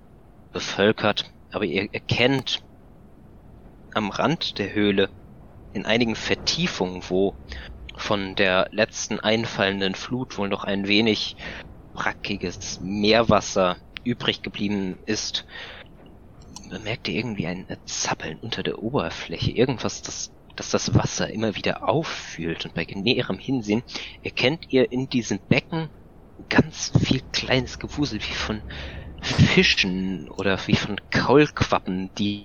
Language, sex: German, male